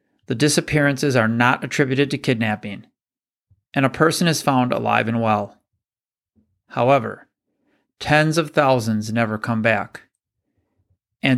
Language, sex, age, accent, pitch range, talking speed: English, male, 40-59, American, 115-140 Hz, 120 wpm